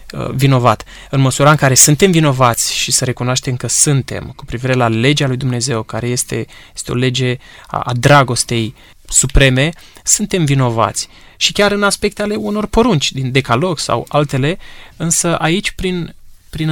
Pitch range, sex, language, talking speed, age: 130-170 Hz, male, Romanian, 160 wpm, 20-39